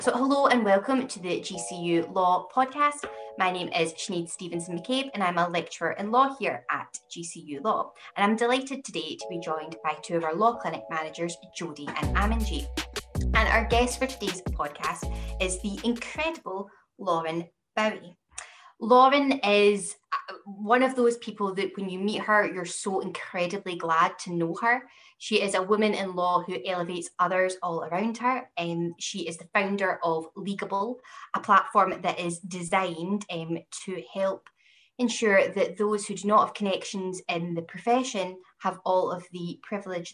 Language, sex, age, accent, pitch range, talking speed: English, female, 10-29, British, 175-220 Hz, 170 wpm